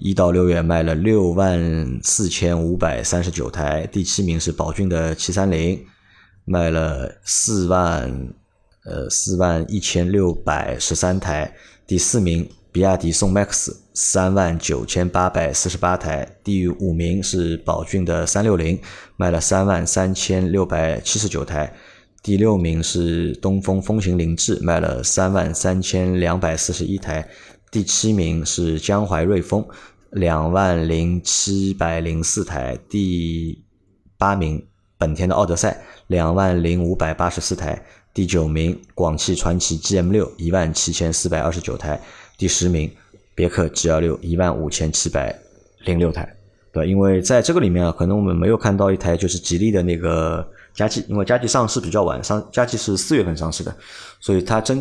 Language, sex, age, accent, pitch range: Chinese, male, 20-39, native, 85-95 Hz